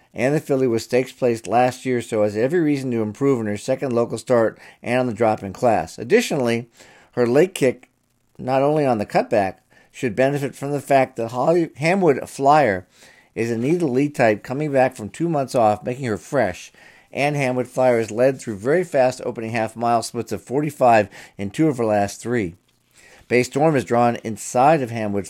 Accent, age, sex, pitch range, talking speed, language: American, 50-69, male, 110-130 Hz, 200 wpm, English